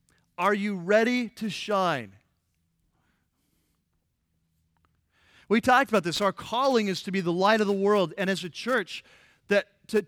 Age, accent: 40-59, American